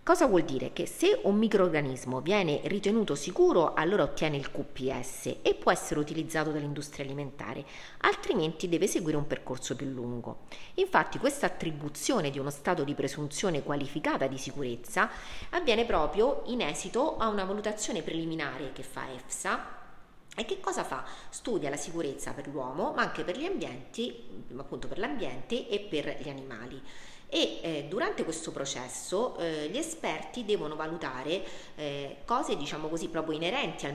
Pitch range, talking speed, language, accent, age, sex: 140-185 Hz, 155 wpm, Italian, native, 40-59, female